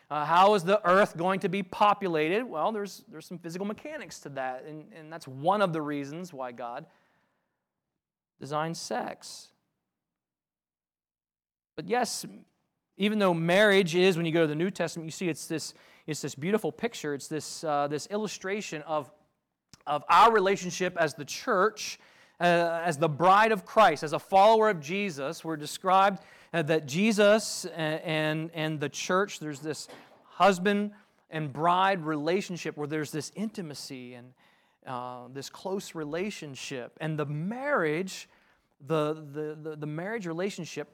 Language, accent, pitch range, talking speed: English, American, 155-200 Hz, 150 wpm